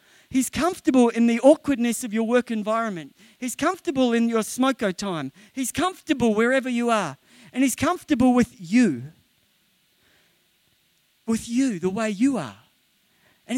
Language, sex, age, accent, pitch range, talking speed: English, male, 50-69, Australian, 155-225 Hz, 140 wpm